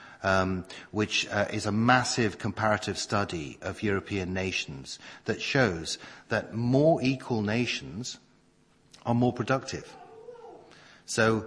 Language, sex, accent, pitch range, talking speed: English, male, British, 100-135 Hz, 110 wpm